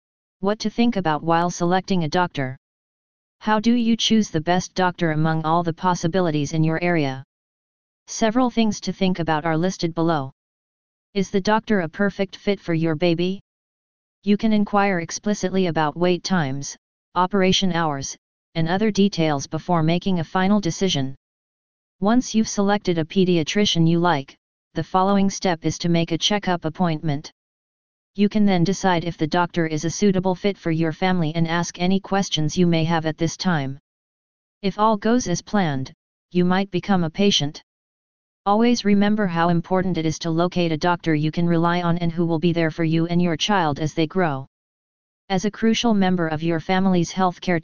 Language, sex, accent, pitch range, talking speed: English, female, American, 165-195 Hz, 180 wpm